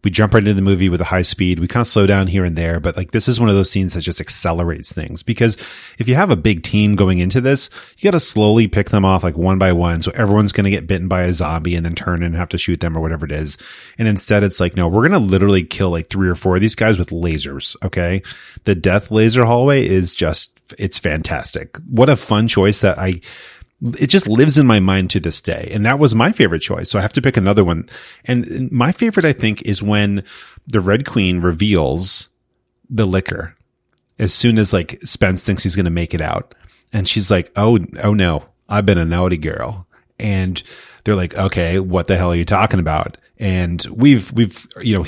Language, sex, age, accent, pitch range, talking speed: English, male, 30-49, American, 90-110 Hz, 240 wpm